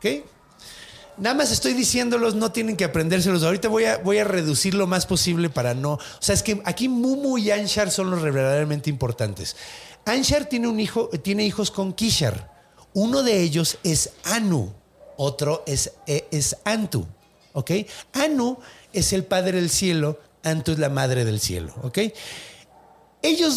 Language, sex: Spanish, male